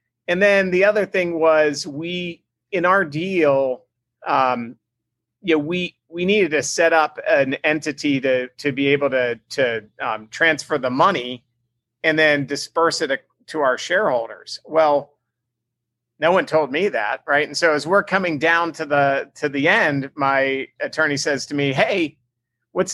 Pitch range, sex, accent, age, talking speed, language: 125-165 Hz, male, American, 40-59, 165 wpm, English